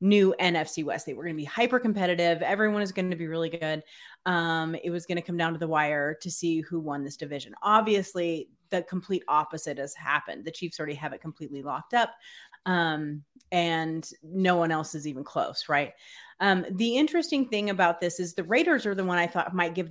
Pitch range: 170-230 Hz